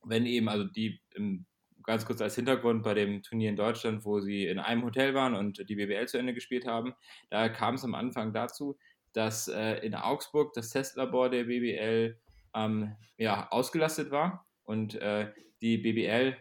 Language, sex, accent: German, male, German